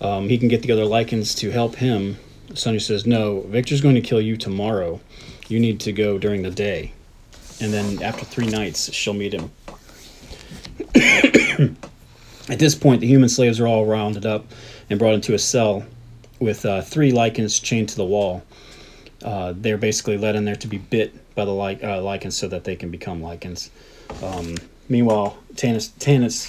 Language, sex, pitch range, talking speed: English, male, 105-120 Hz, 180 wpm